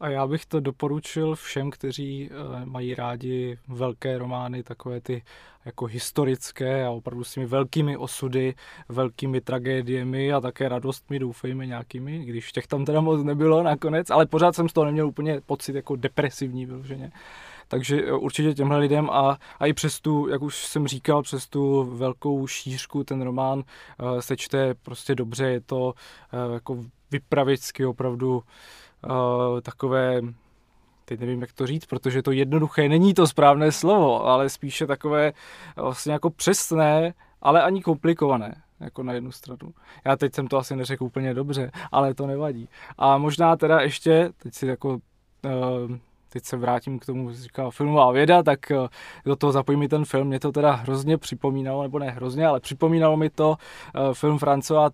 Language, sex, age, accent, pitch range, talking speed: Czech, male, 20-39, native, 130-150 Hz, 160 wpm